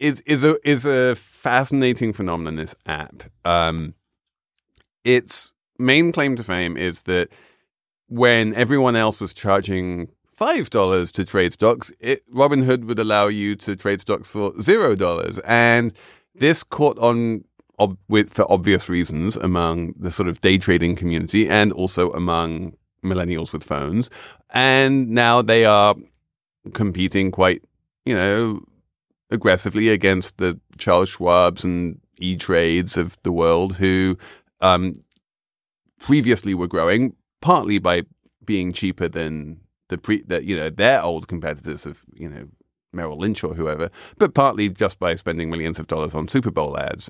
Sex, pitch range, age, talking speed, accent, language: male, 85-115 Hz, 30-49, 150 wpm, British, English